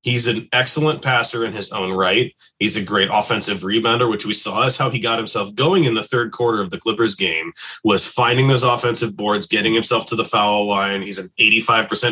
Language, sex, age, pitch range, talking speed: English, male, 20-39, 100-125 Hz, 215 wpm